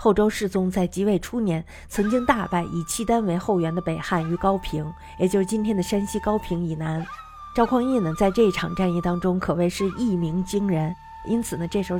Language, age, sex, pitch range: Chinese, 50-69, female, 170-215 Hz